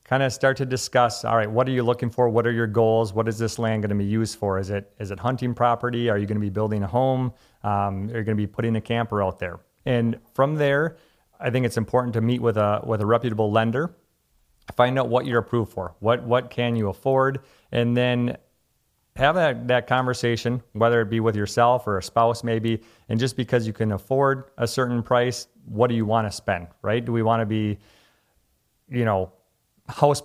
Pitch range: 110-125 Hz